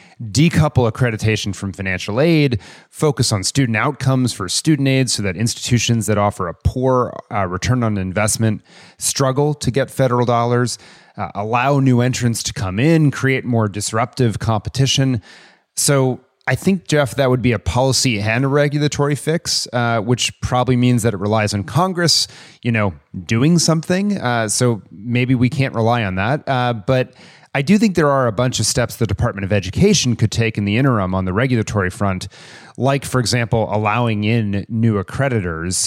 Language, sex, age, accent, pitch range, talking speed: English, male, 30-49, American, 105-130 Hz, 175 wpm